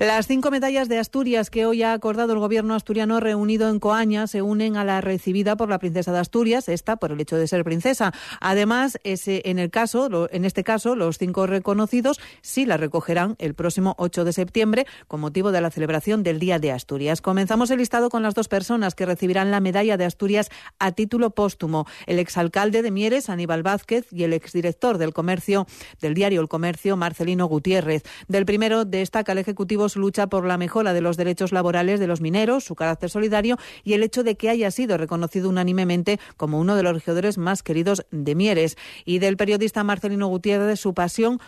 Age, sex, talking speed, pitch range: 40-59, female, 200 wpm, 170-215 Hz